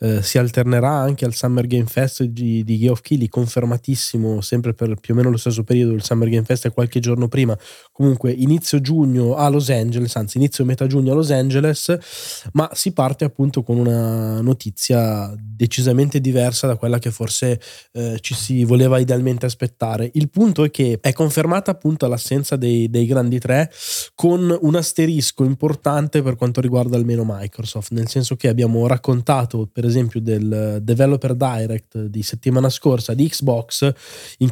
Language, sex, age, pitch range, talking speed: Italian, male, 20-39, 120-140 Hz, 175 wpm